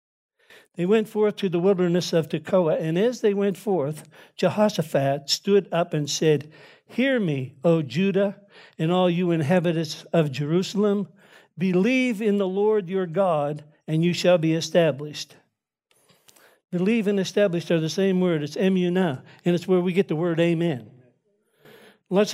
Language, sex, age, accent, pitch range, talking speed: English, male, 60-79, American, 145-190 Hz, 155 wpm